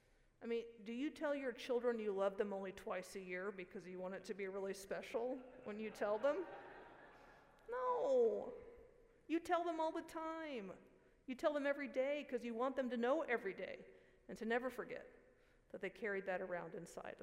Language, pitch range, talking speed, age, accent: English, 200-260 Hz, 195 wpm, 50-69, American